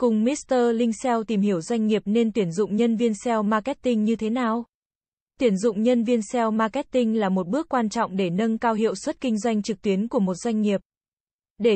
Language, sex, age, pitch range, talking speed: Vietnamese, female, 20-39, 200-240 Hz, 215 wpm